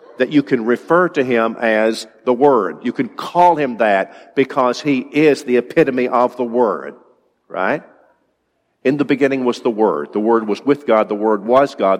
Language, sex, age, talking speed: English, male, 50-69, 190 wpm